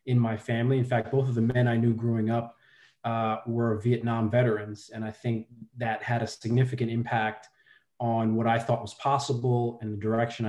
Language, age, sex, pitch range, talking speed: English, 30-49, male, 115-125 Hz, 195 wpm